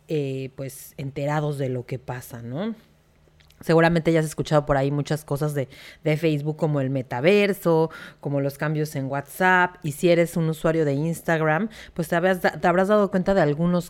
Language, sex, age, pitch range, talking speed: Spanish, female, 40-59, 150-185 Hz, 180 wpm